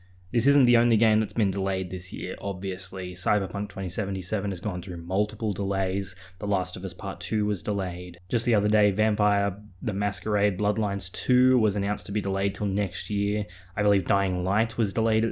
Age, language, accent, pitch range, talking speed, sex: 10-29, English, Australian, 95-110 Hz, 195 wpm, male